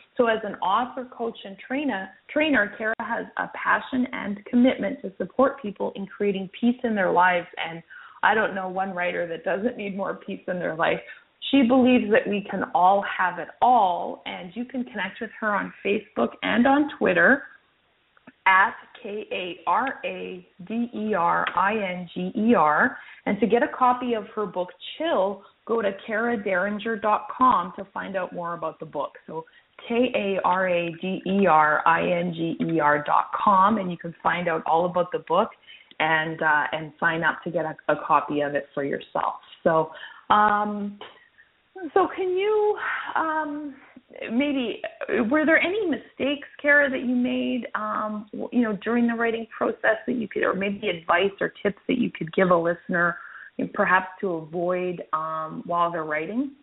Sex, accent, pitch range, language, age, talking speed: female, American, 175-255 Hz, English, 30-49, 155 wpm